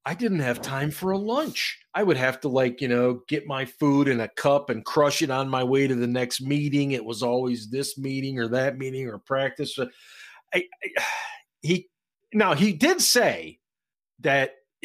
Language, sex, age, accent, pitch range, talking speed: English, male, 40-59, American, 120-155 Hz, 195 wpm